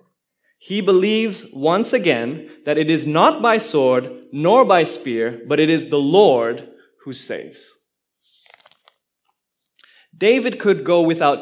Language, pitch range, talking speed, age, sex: English, 145-220 Hz, 125 wpm, 30-49, male